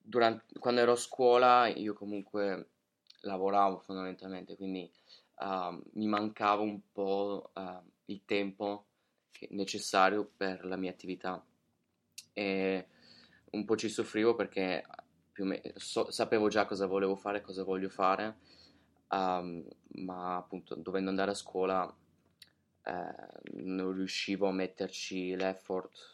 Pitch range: 95-100 Hz